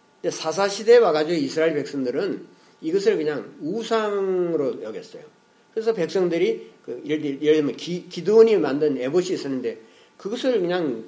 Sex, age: male, 50-69